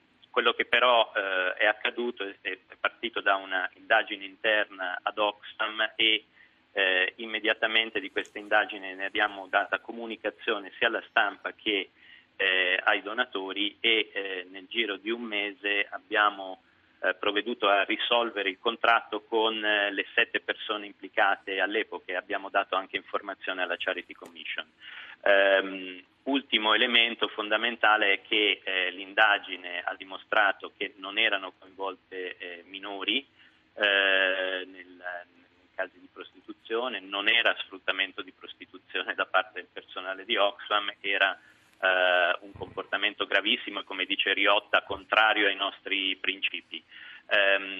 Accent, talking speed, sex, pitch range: native, 130 wpm, male, 95-115 Hz